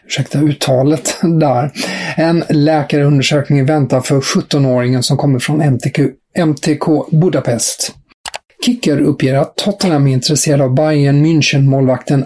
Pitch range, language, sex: 130-155 Hz, English, male